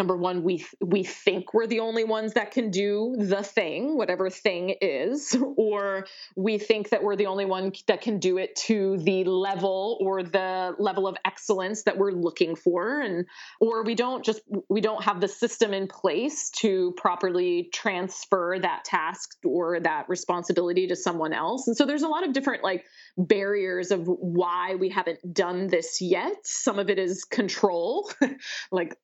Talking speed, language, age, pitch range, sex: 180 wpm, English, 20-39, 180-215 Hz, female